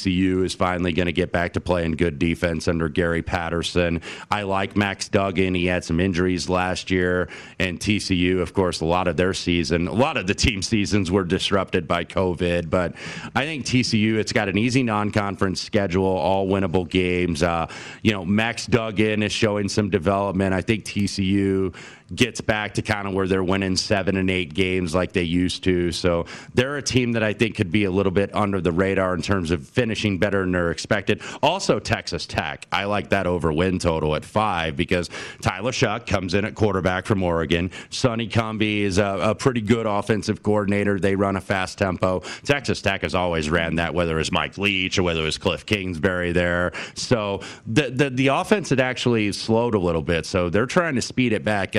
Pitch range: 90-105 Hz